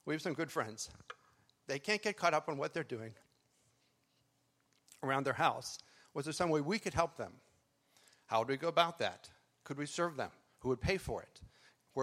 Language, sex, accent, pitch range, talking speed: English, male, American, 125-155 Hz, 205 wpm